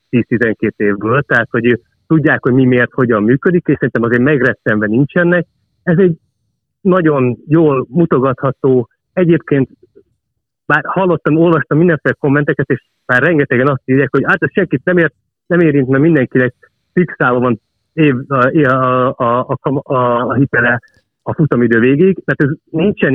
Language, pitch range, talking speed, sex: Hungarian, 125-160 Hz, 150 wpm, male